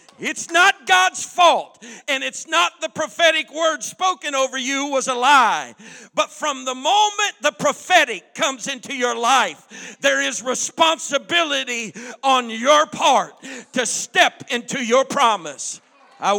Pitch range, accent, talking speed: 255-315 Hz, American, 140 wpm